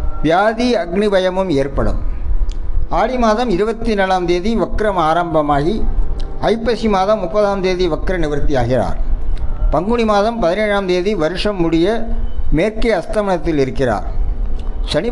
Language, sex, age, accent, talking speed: Tamil, male, 60-79, native, 105 wpm